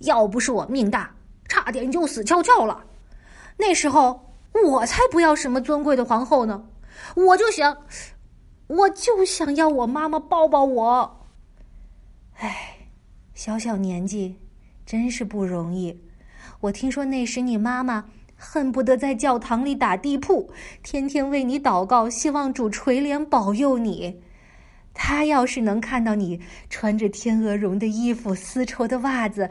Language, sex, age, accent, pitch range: Chinese, female, 20-39, native, 220-295 Hz